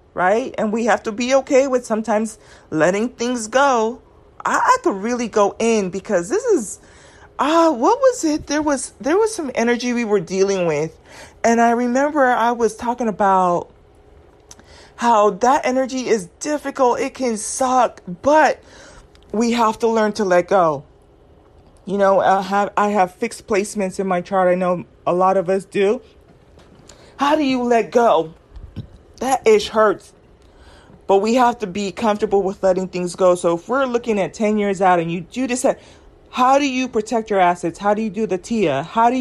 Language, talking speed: English, 185 wpm